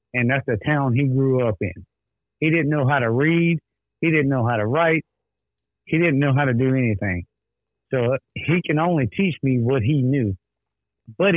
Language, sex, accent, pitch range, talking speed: English, male, American, 115-150 Hz, 195 wpm